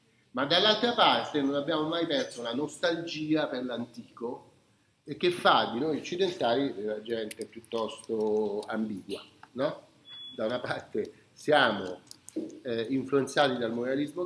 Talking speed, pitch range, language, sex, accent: 125 wpm, 135-215 Hz, Italian, male, native